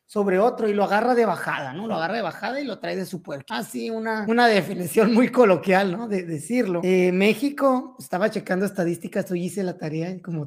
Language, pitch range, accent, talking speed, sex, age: Spanish, 180-220 Hz, Mexican, 220 wpm, male, 30-49